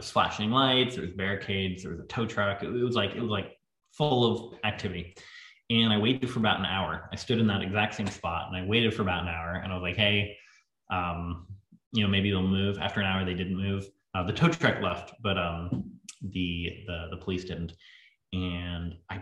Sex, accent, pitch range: male, American, 90-105 Hz